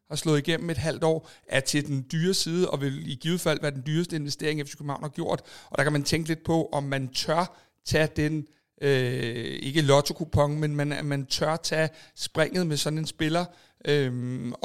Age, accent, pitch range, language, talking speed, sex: 60-79, native, 140-165 Hz, Danish, 205 wpm, male